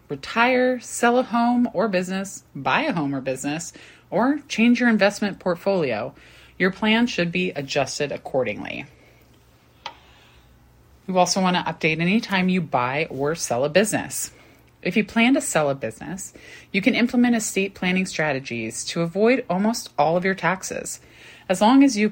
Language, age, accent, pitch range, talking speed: English, 30-49, American, 150-225 Hz, 160 wpm